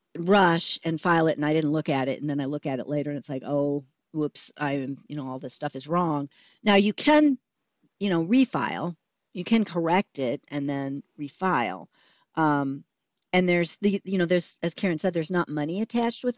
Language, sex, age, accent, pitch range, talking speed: English, female, 50-69, American, 145-180 Hz, 215 wpm